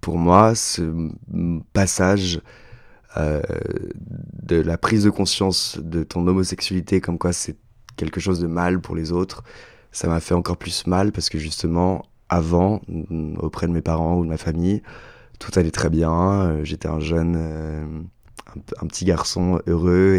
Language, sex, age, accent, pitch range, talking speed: French, male, 20-39, French, 80-95 Hz, 155 wpm